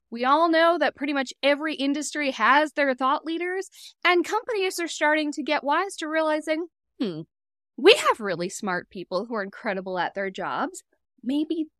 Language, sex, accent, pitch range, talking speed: English, female, American, 215-335 Hz, 175 wpm